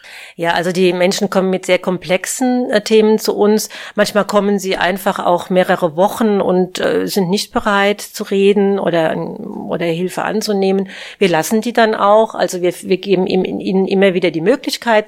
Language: German